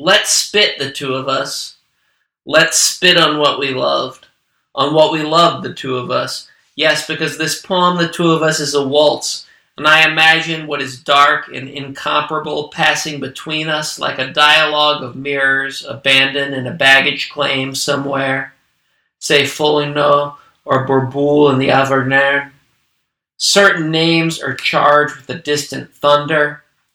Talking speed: 150 wpm